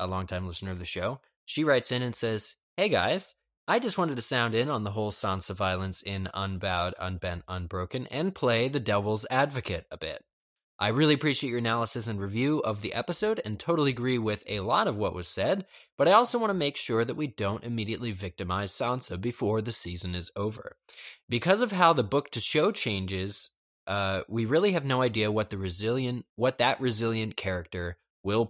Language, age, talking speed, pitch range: English, 20-39, 190 wpm, 100-140 Hz